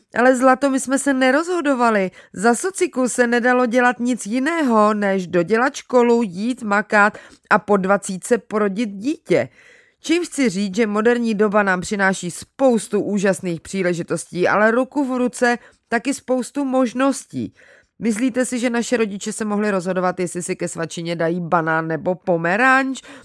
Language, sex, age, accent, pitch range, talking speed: Czech, female, 30-49, native, 195-255 Hz, 145 wpm